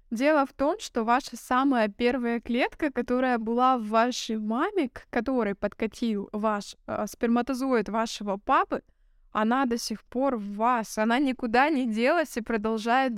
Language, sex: Russian, female